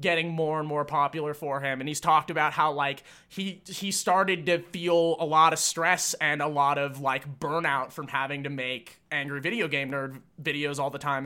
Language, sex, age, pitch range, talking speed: English, male, 20-39, 145-175 Hz, 215 wpm